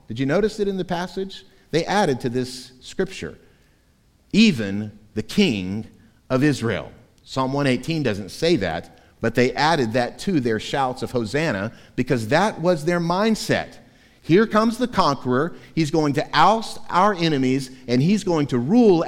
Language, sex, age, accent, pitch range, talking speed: English, male, 50-69, American, 110-185 Hz, 160 wpm